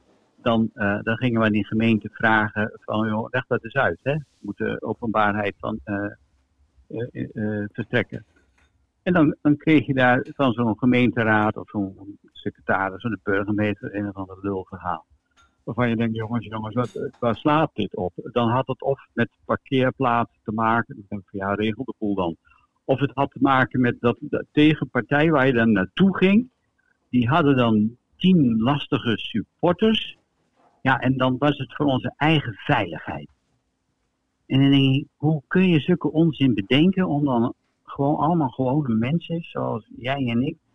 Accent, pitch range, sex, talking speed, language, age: Dutch, 110-150 Hz, male, 170 wpm, Dutch, 60-79